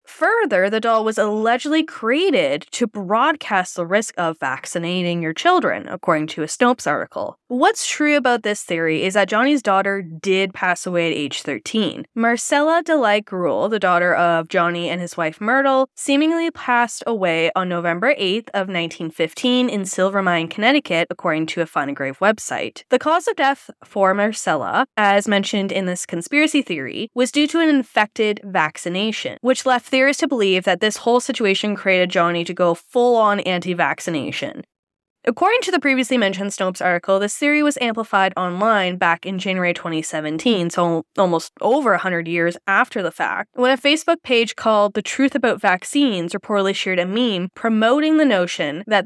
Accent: American